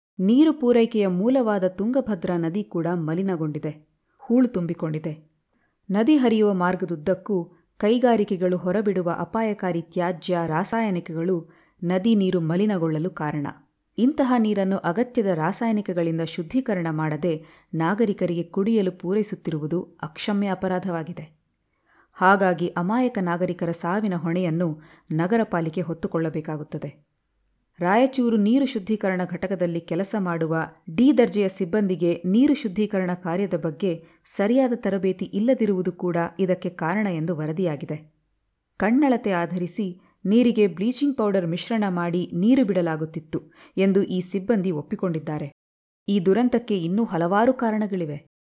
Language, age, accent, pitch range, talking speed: Kannada, 30-49, native, 170-210 Hz, 95 wpm